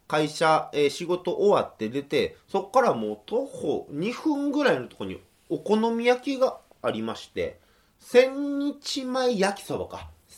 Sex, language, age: male, Japanese, 30-49